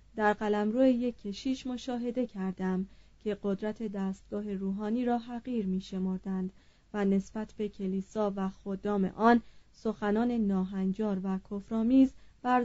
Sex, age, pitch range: female, 30-49, 195-240 Hz